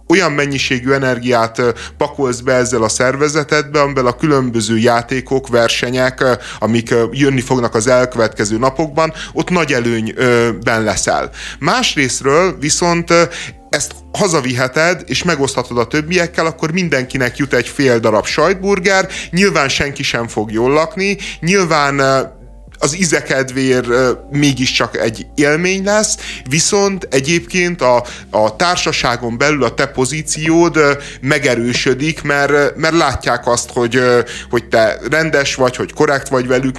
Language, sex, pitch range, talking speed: Hungarian, male, 120-160 Hz, 125 wpm